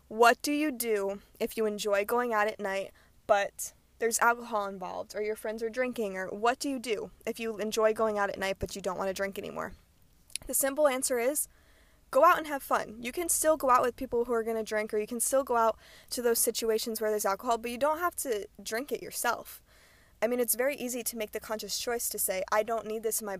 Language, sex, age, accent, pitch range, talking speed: English, female, 20-39, American, 210-245 Hz, 250 wpm